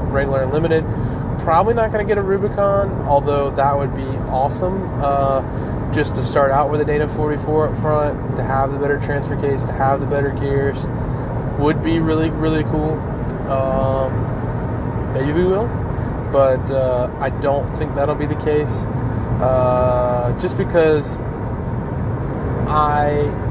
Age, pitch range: 20-39, 125-150 Hz